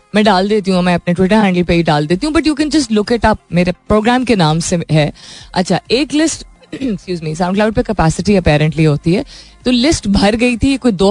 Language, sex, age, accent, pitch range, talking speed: Hindi, female, 20-39, native, 165-220 Hz, 230 wpm